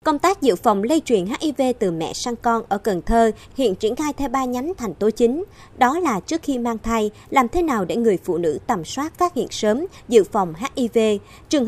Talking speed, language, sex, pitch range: 230 wpm, Vietnamese, male, 200-275 Hz